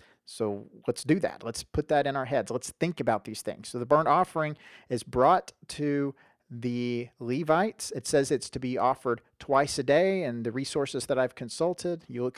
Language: English